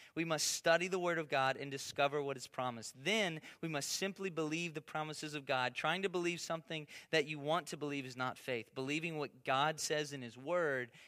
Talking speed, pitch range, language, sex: 215 wpm, 155-190 Hz, English, male